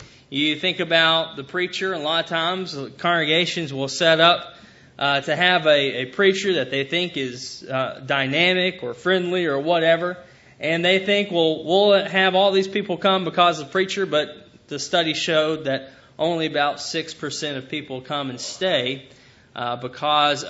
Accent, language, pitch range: American, English, 130-185 Hz